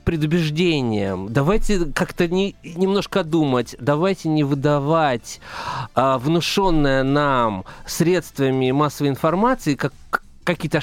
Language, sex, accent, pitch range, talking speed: Russian, male, native, 140-180 Hz, 95 wpm